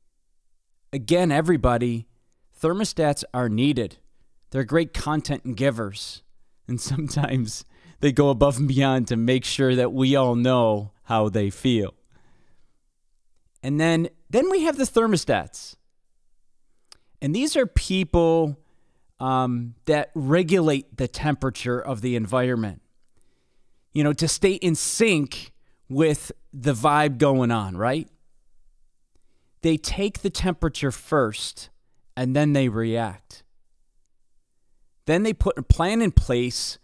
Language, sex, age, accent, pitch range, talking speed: English, male, 30-49, American, 115-160 Hz, 120 wpm